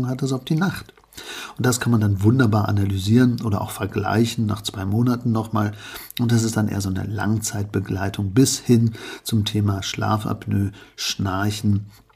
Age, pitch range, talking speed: 50-69, 100-115 Hz, 175 wpm